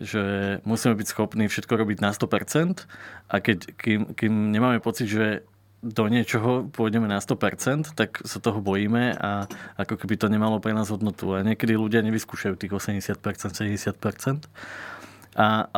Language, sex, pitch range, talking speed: Slovak, male, 105-120 Hz, 140 wpm